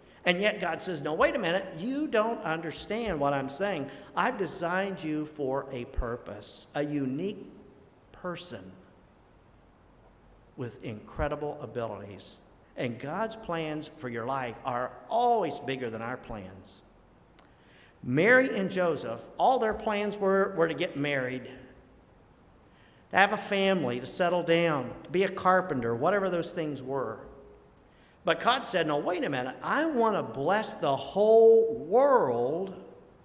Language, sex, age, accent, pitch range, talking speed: English, male, 50-69, American, 135-200 Hz, 140 wpm